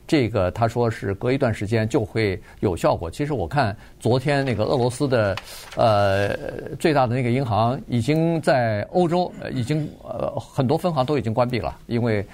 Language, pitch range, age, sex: Chinese, 105-140 Hz, 50-69, male